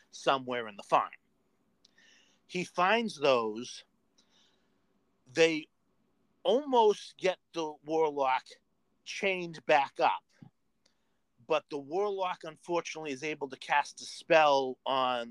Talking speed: 100 wpm